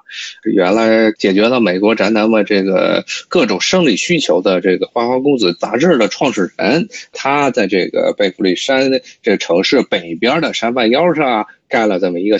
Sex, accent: male, native